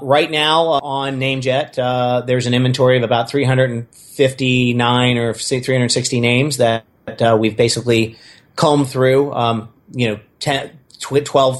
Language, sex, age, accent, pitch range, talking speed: English, male, 40-59, American, 115-130 Hz, 125 wpm